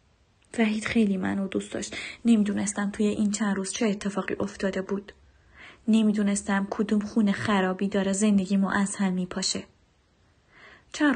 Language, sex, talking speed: Persian, female, 130 wpm